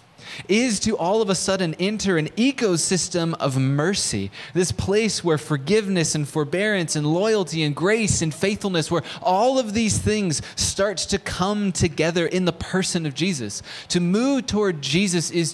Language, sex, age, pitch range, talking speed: English, male, 20-39, 130-175 Hz, 160 wpm